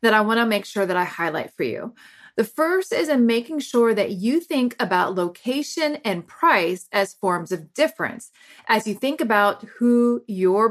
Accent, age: American, 30-49